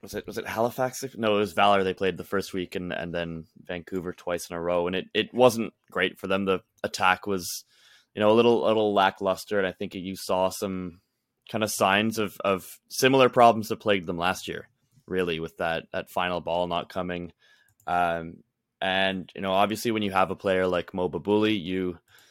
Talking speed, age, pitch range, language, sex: 210 wpm, 20-39, 90-105 Hz, English, male